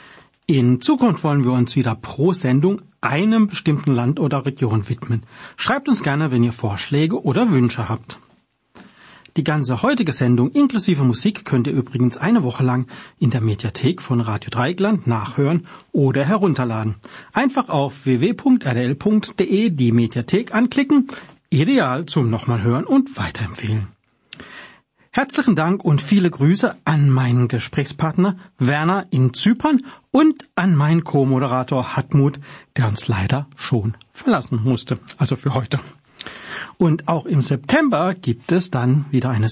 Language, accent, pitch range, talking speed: German, German, 125-185 Hz, 135 wpm